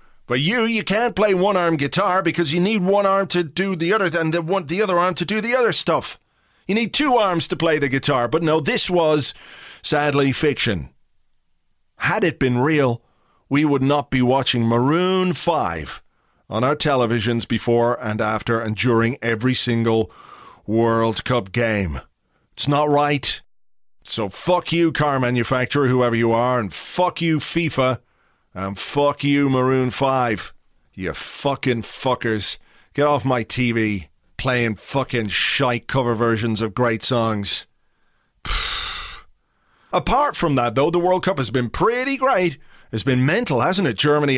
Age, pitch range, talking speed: 40-59, 120-175 Hz, 160 wpm